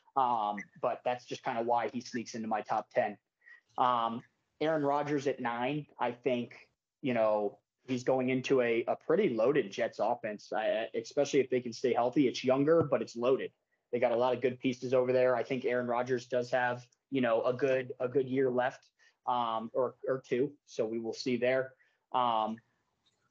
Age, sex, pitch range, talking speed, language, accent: 20-39, male, 115-135 Hz, 195 wpm, English, American